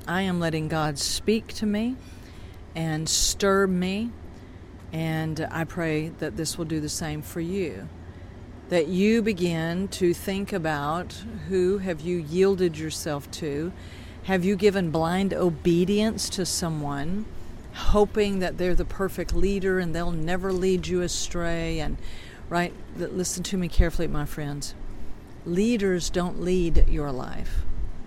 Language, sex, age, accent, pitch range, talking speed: English, female, 50-69, American, 155-190 Hz, 140 wpm